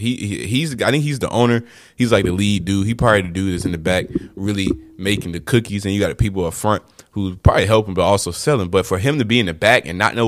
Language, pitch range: English, 90-115 Hz